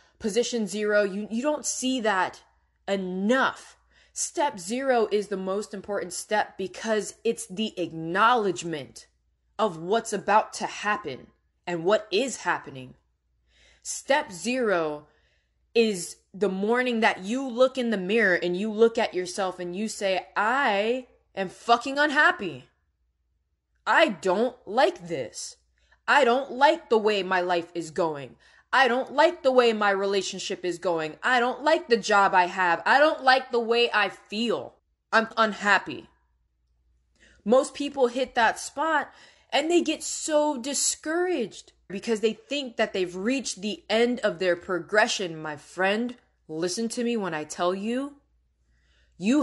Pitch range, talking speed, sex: 175-240 Hz, 145 wpm, female